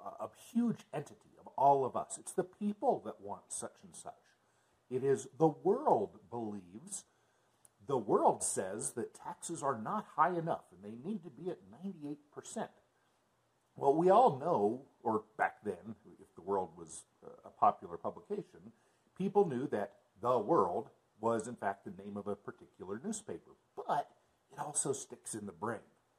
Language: English